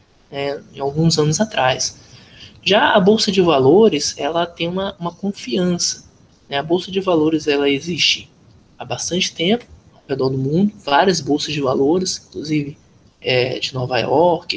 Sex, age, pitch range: male, 20-39, 140-185 Hz